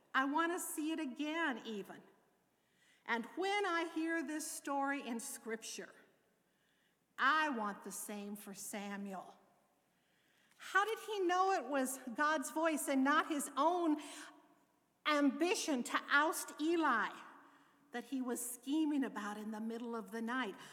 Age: 50-69